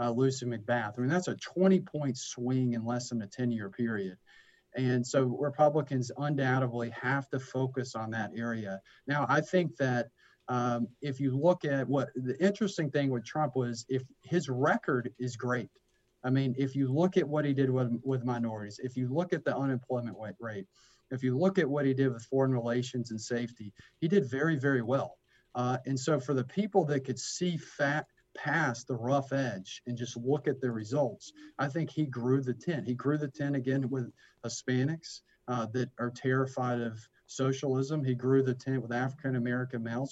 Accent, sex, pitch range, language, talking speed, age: American, male, 120-140 Hz, English, 190 wpm, 40-59